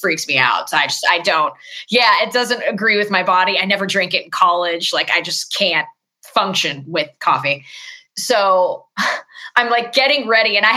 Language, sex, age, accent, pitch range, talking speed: English, female, 20-39, American, 175-245 Hz, 195 wpm